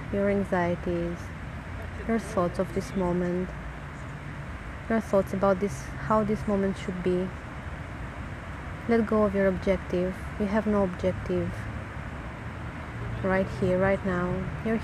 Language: Romanian